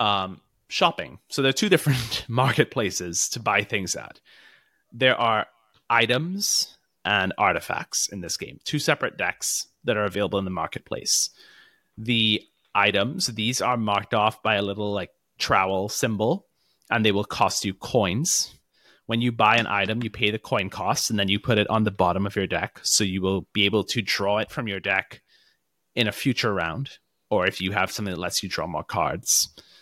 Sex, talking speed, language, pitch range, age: male, 190 wpm, English, 100-120 Hz, 30-49